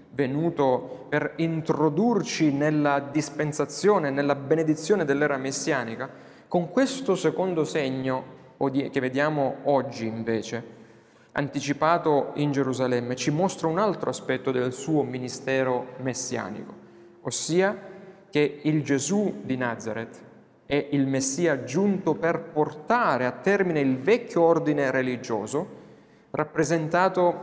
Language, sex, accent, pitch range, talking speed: Italian, male, native, 130-170 Hz, 105 wpm